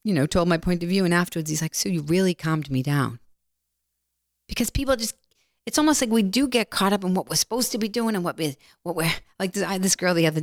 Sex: female